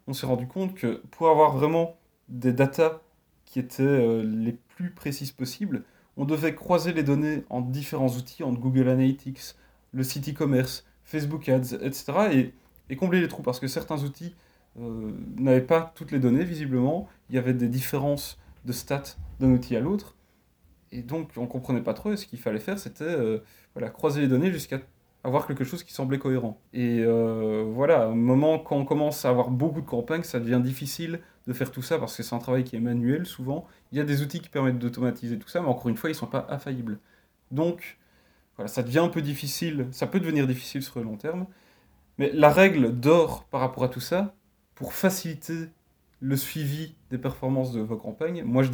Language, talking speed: French, 200 wpm